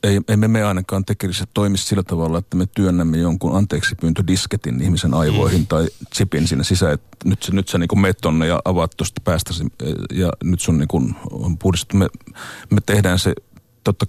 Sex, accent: male, native